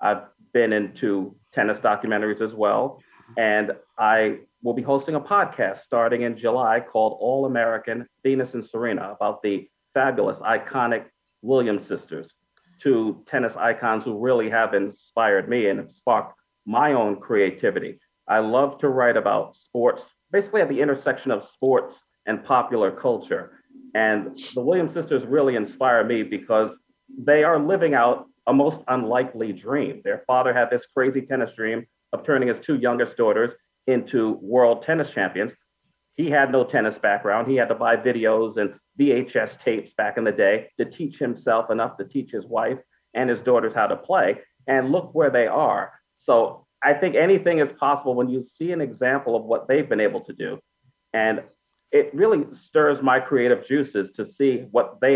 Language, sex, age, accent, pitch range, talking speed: English, male, 40-59, American, 115-145 Hz, 170 wpm